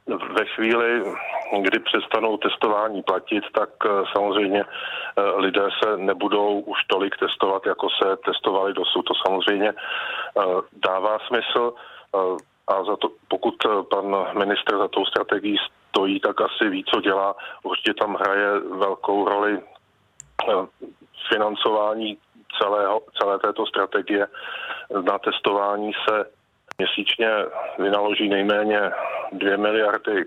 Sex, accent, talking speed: male, native, 110 wpm